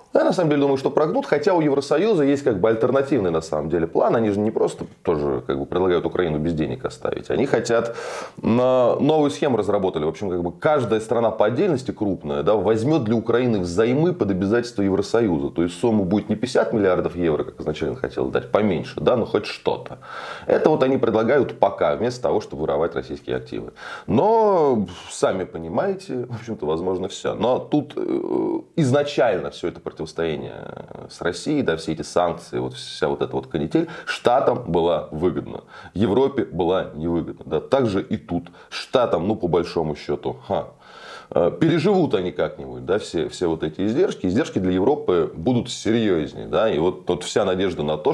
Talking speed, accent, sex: 180 wpm, native, male